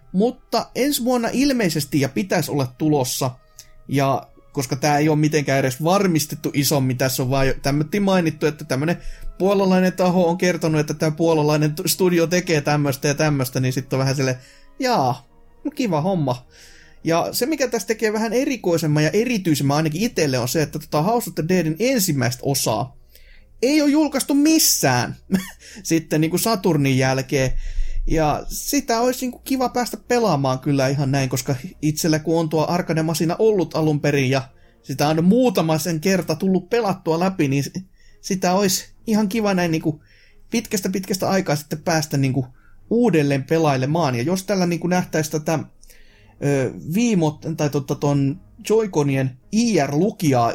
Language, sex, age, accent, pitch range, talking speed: Finnish, male, 30-49, native, 140-190 Hz, 150 wpm